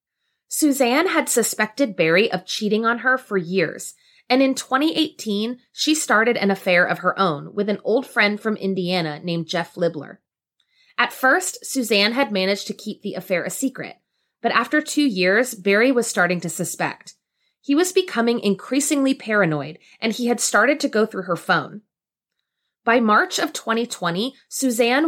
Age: 20-39